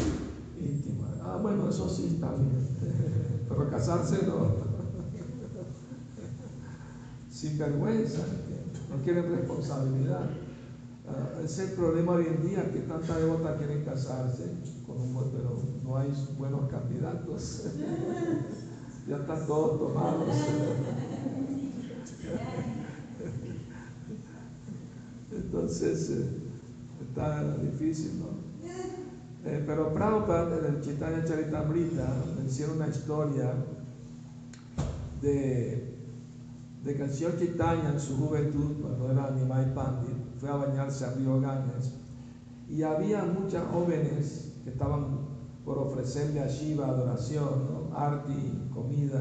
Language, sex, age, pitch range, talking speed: Spanish, male, 60-79, 130-155 Hz, 100 wpm